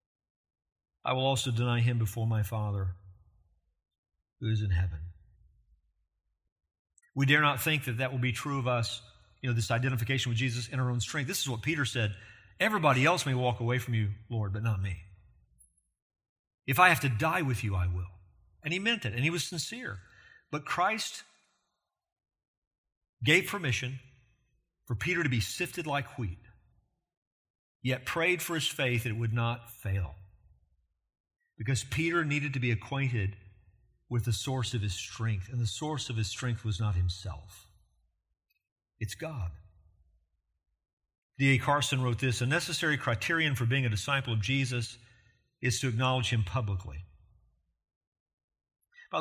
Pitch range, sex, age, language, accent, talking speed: 95-135 Hz, male, 50-69, English, American, 155 wpm